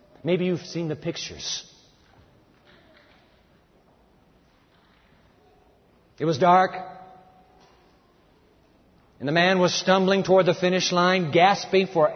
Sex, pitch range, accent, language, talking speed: male, 170-215 Hz, American, English, 95 wpm